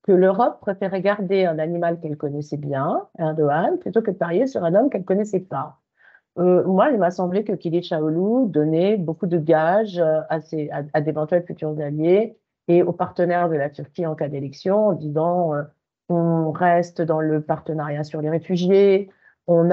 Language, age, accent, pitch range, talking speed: French, 50-69, French, 150-185 Hz, 185 wpm